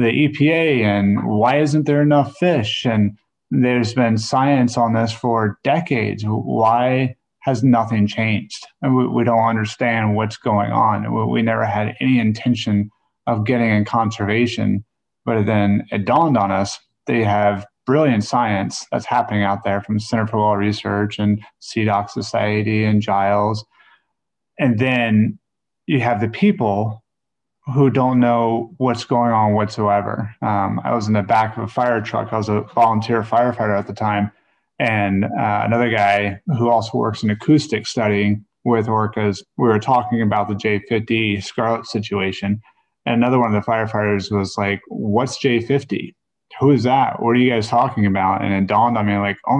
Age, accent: 30-49, American